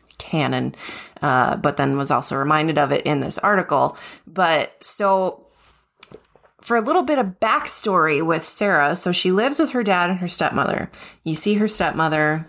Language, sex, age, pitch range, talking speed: English, female, 20-39, 145-185 Hz, 170 wpm